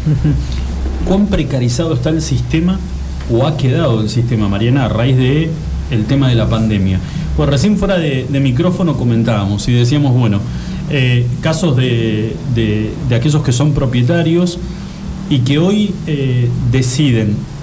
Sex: male